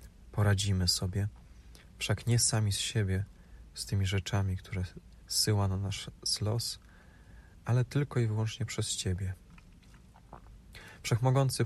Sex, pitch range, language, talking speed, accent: male, 90-110 Hz, Polish, 115 wpm, native